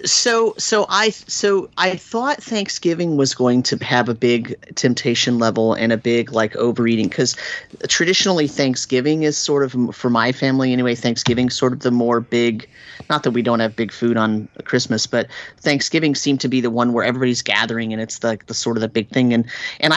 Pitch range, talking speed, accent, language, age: 120-145 Hz, 200 wpm, American, English, 30-49